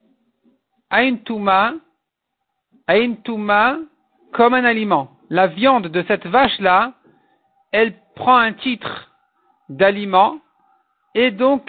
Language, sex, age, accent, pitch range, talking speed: French, male, 50-69, French, 195-255 Hz, 80 wpm